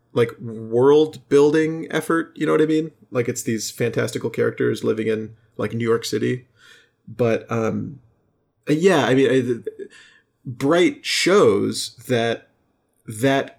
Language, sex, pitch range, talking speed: English, male, 115-145 Hz, 130 wpm